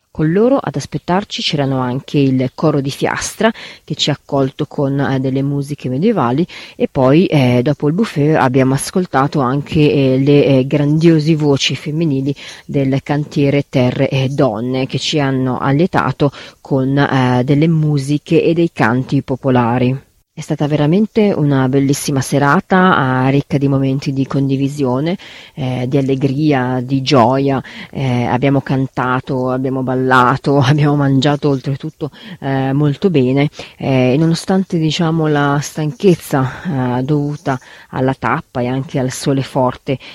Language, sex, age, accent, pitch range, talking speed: Italian, female, 30-49, native, 130-150 Hz, 140 wpm